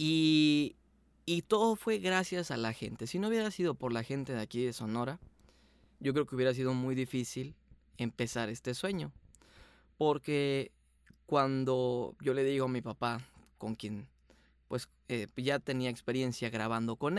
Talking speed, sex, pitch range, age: 160 wpm, male, 115-145 Hz, 20-39